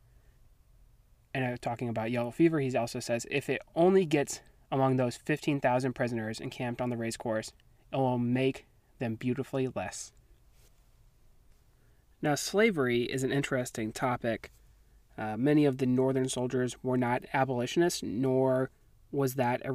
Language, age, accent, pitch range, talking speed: English, 30-49, American, 120-145 Hz, 140 wpm